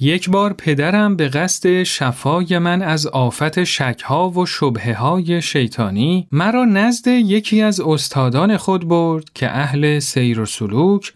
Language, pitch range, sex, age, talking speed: Persian, 135-200 Hz, male, 40-59, 135 wpm